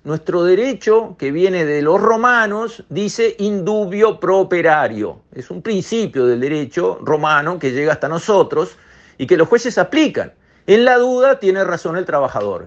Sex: male